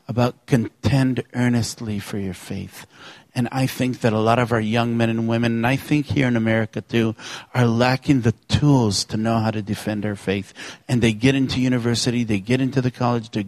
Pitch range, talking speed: 110-125 Hz, 210 wpm